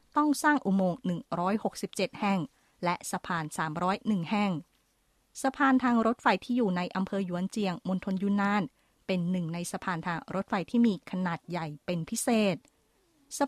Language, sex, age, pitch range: Thai, female, 20-39, 185-230 Hz